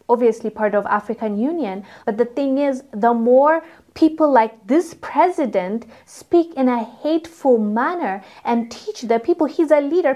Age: 20-39